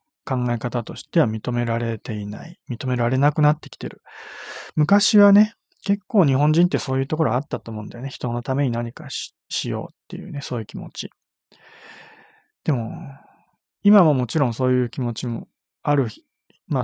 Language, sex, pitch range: Japanese, male, 125-175 Hz